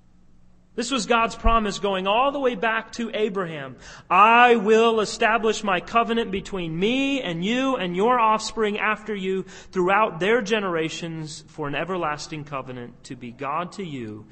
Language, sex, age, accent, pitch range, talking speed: English, male, 30-49, American, 150-220 Hz, 155 wpm